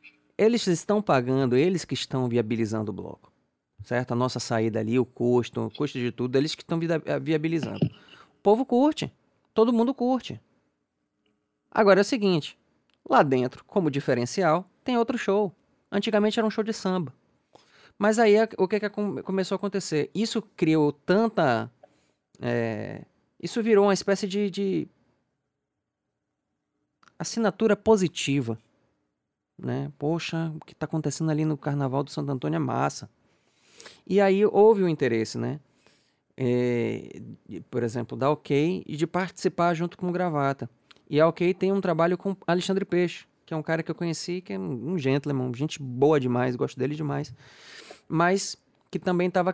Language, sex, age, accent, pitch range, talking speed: Portuguese, male, 20-39, Brazilian, 130-195 Hz, 155 wpm